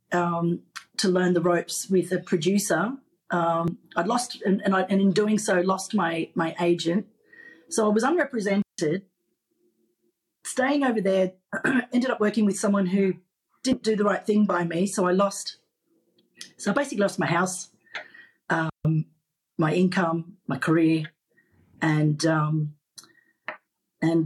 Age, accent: 40-59, Australian